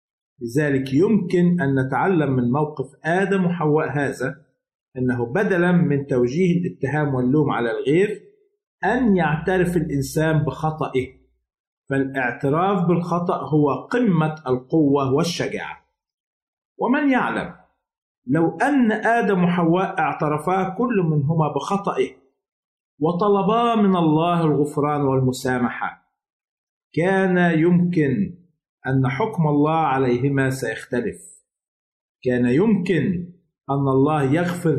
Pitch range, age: 135-185 Hz, 50-69